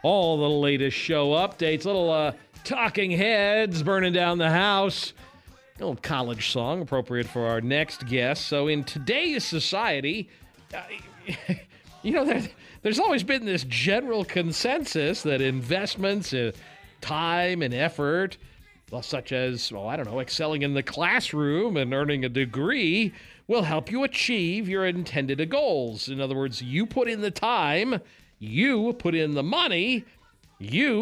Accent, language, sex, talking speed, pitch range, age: American, English, male, 145 wpm, 145-205 Hz, 40-59